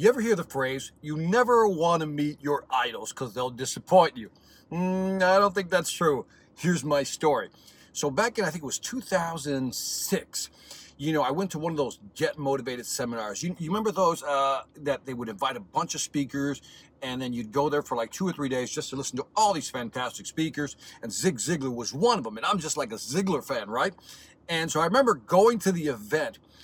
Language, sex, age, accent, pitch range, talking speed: English, male, 50-69, American, 135-185 Hz, 225 wpm